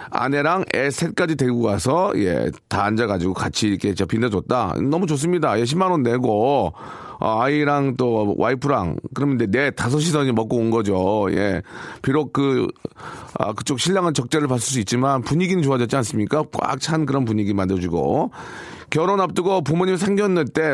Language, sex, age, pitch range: Korean, male, 40-59, 115-165 Hz